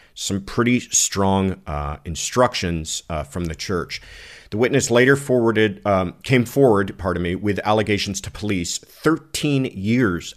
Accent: American